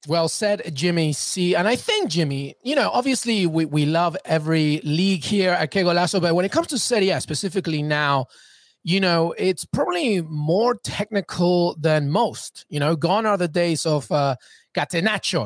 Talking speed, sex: 175 wpm, male